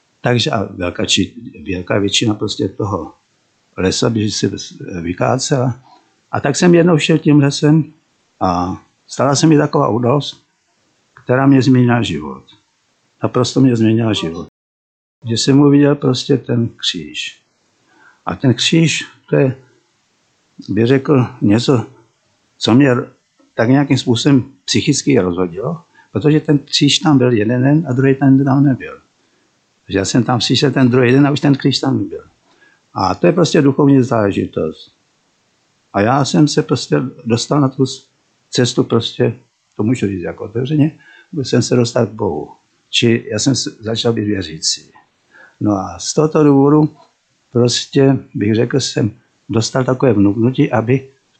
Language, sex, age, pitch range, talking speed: Czech, male, 50-69, 115-140 Hz, 150 wpm